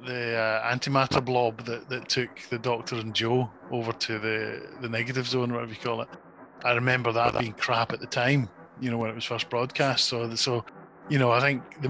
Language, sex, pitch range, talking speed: English, male, 120-140 Hz, 215 wpm